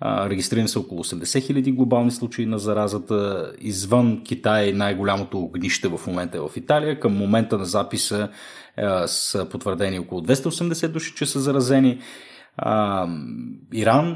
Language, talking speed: Bulgarian, 130 wpm